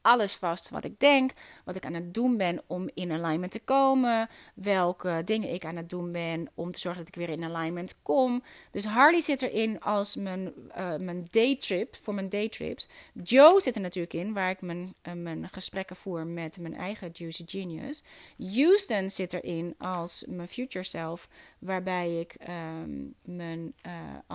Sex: female